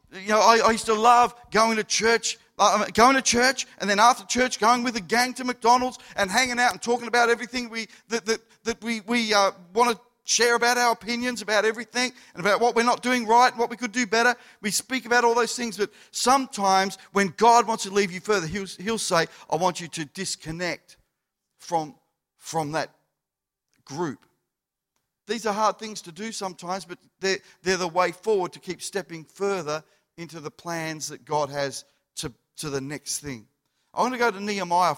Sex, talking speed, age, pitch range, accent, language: male, 205 wpm, 50-69, 165-225 Hz, Australian, English